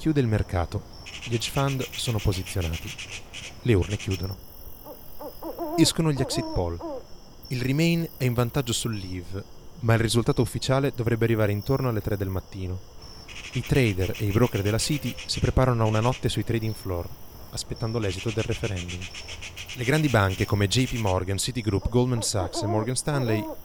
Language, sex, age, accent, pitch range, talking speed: Italian, male, 30-49, native, 95-120 Hz, 160 wpm